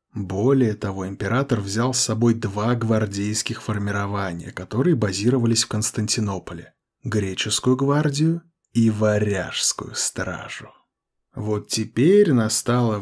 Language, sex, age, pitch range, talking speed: Russian, male, 20-39, 105-130 Hz, 95 wpm